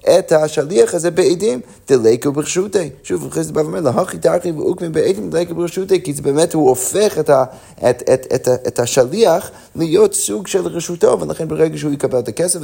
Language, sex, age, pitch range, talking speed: Hebrew, male, 30-49, 130-175 Hz, 190 wpm